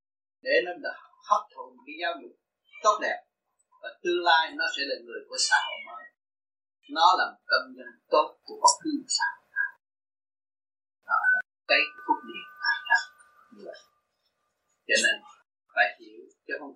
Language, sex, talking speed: Vietnamese, male, 140 wpm